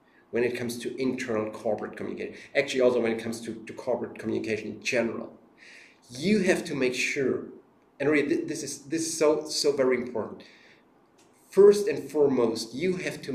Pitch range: 115-165 Hz